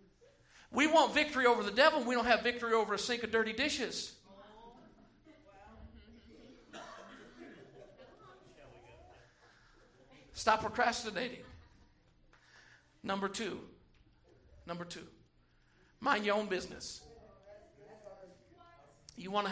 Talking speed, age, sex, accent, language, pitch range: 90 wpm, 50-69, male, American, English, 200-265 Hz